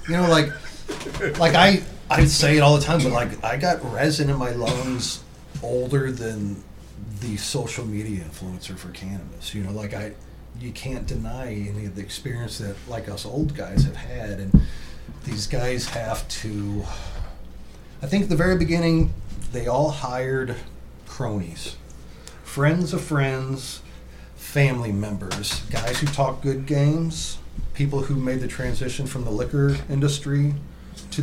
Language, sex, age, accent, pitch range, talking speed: English, male, 30-49, American, 100-145 Hz, 155 wpm